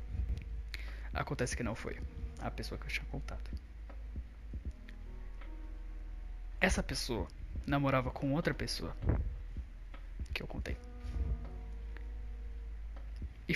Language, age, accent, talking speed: Portuguese, 20-39, Brazilian, 90 wpm